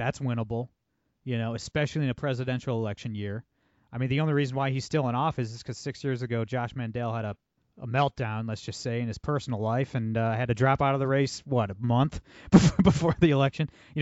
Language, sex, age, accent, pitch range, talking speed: English, male, 30-49, American, 115-140 Hz, 230 wpm